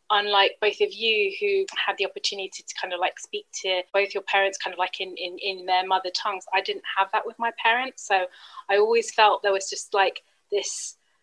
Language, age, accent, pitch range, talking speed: English, 20-39, British, 195-260 Hz, 225 wpm